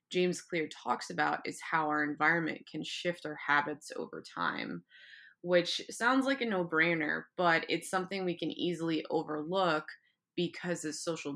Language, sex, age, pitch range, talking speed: English, female, 20-39, 155-180 Hz, 155 wpm